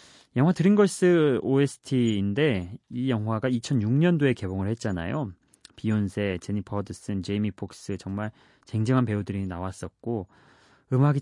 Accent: native